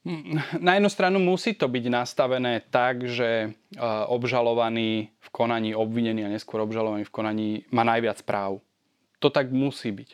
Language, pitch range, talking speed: Slovak, 110-125 Hz, 150 wpm